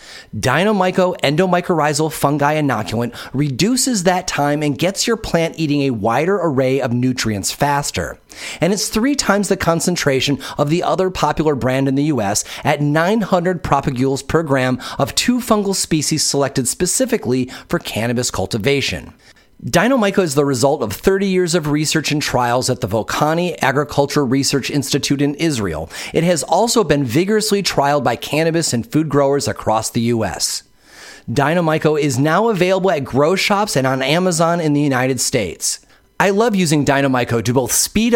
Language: English